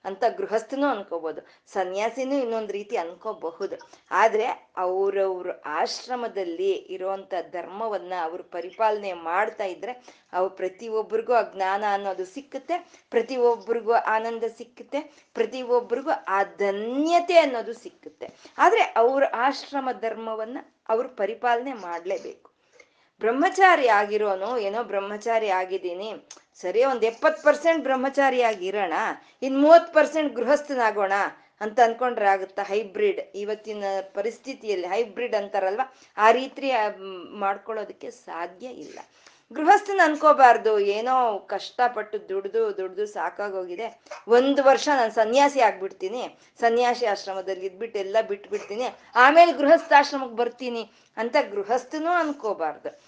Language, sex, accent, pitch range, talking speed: Kannada, female, native, 200-280 Hz, 100 wpm